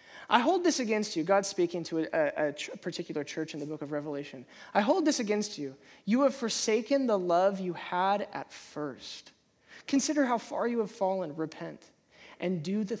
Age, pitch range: 20-39, 205-290 Hz